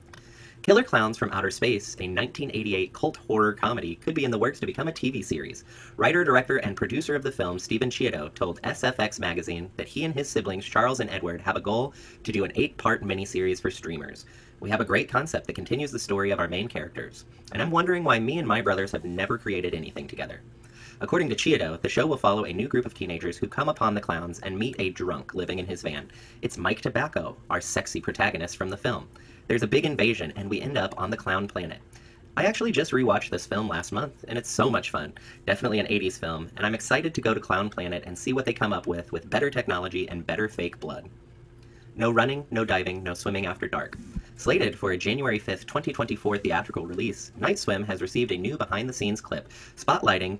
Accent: American